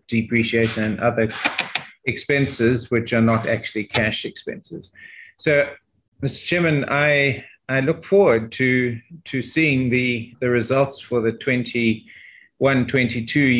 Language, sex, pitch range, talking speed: English, male, 115-130 Hz, 115 wpm